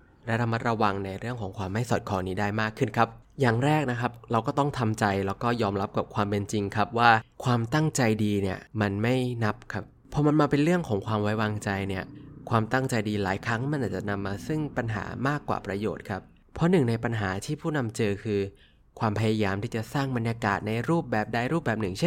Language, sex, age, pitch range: Thai, male, 20-39, 105-135 Hz